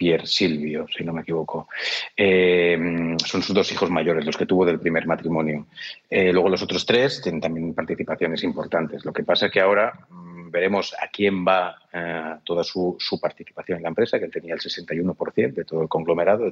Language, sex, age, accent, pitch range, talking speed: Spanish, male, 30-49, Spanish, 85-100 Hz, 200 wpm